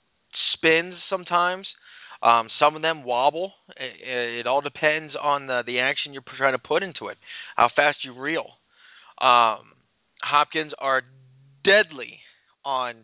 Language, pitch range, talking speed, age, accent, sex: English, 125-155 Hz, 135 wpm, 20-39, American, male